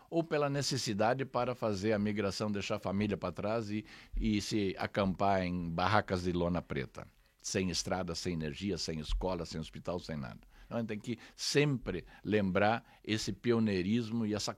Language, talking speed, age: Portuguese, 175 wpm, 60-79